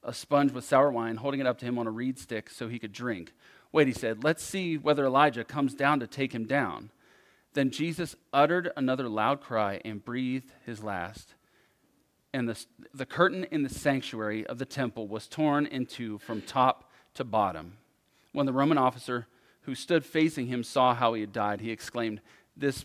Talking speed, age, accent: 195 wpm, 40-59, American